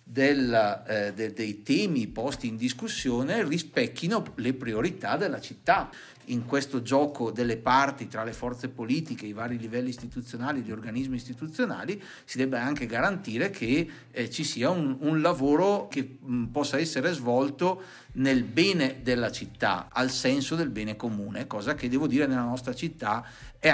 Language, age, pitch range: Italian, 50-69, 110-135 Hz